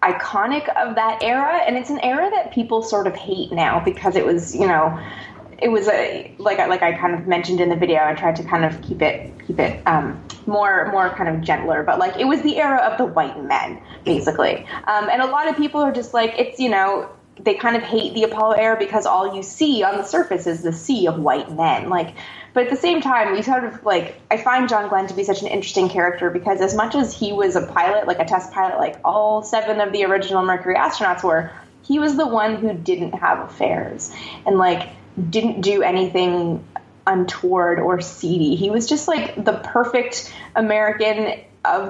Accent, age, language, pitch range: American, 20-39, English, 185-230 Hz